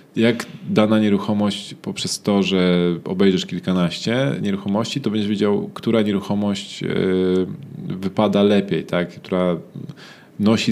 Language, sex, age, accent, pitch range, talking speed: Polish, male, 20-39, native, 95-110 Hz, 100 wpm